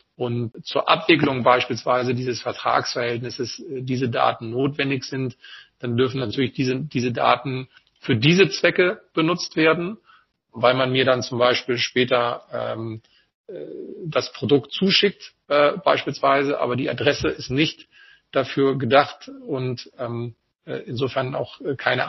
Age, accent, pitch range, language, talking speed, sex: 40-59, German, 125-155 Hz, German, 125 wpm, male